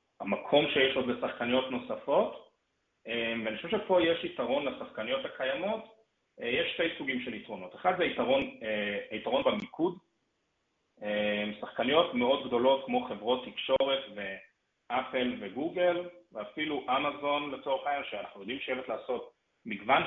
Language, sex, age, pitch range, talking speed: Hebrew, male, 30-49, 110-170 Hz, 115 wpm